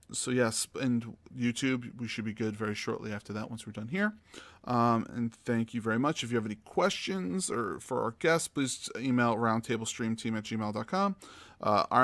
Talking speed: 195 wpm